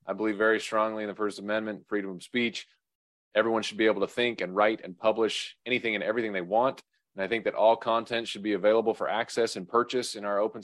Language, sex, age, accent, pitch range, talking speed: English, male, 30-49, American, 110-125 Hz, 235 wpm